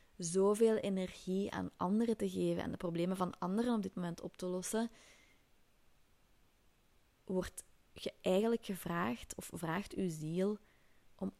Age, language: 20-39, Dutch